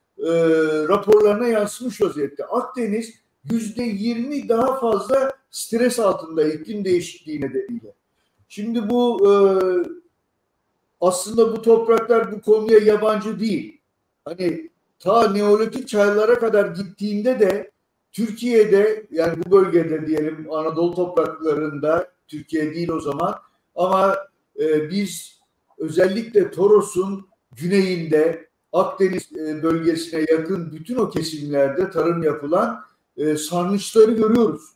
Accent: native